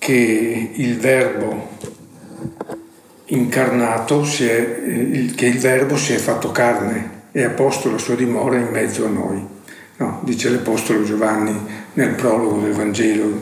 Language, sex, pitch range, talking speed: Italian, male, 115-130 Hz, 140 wpm